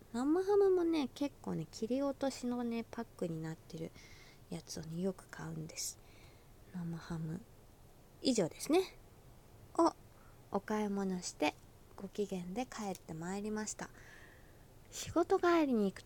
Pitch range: 160-250 Hz